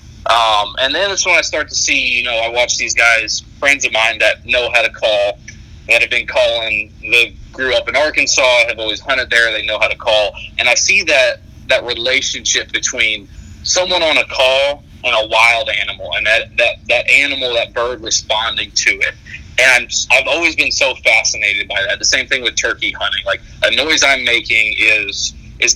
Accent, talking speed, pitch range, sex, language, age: American, 205 wpm, 110-135 Hz, male, English, 30-49